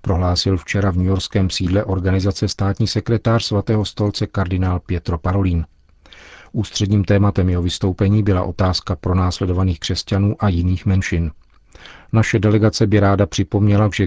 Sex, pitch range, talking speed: male, 95-105 Hz, 135 wpm